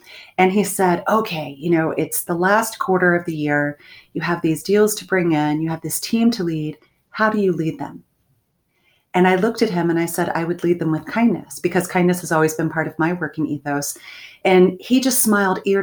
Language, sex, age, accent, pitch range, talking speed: English, female, 30-49, American, 155-195 Hz, 230 wpm